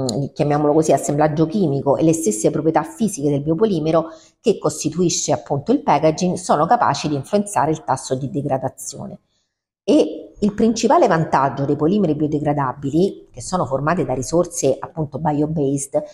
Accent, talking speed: native, 140 wpm